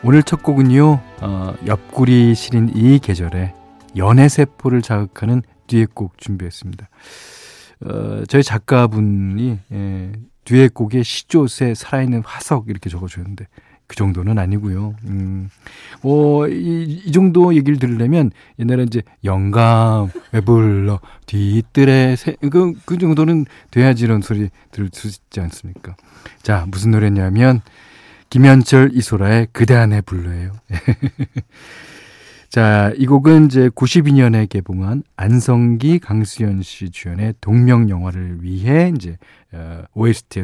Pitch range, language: 100-135 Hz, Korean